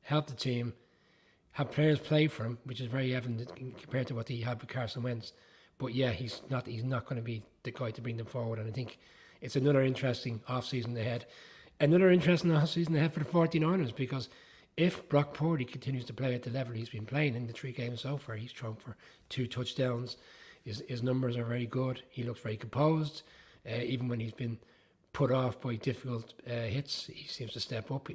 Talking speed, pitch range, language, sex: 215 wpm, 120-145 Hz, English, male